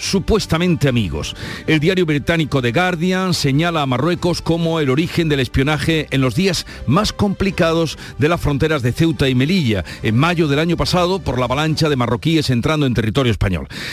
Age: 50-69